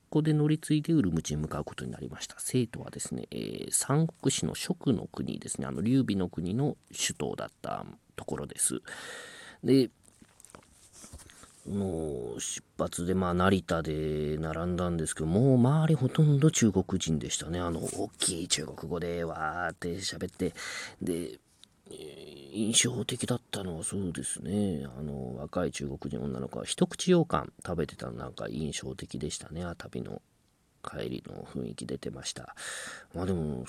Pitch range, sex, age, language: 80-120 Hz, male, 40-59, Japanese